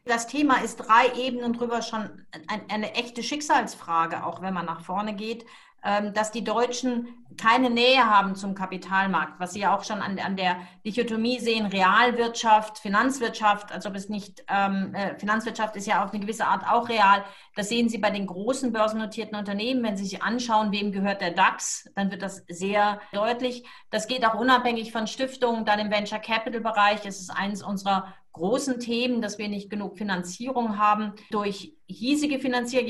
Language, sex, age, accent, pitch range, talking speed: German, female, 40-59, German, 200-240 Hz, 170 wpm